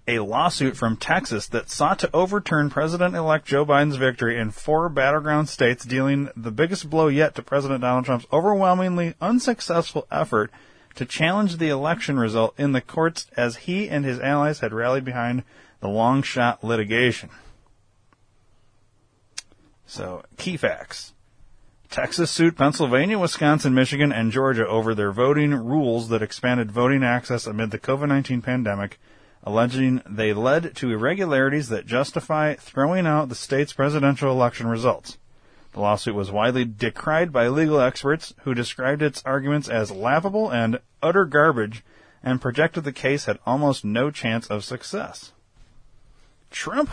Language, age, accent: English, 30-49, American